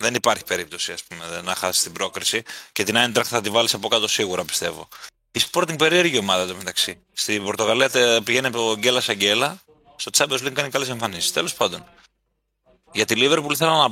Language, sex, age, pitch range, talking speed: Greek, male, 30-49, 100-135 Hz, 190 wpm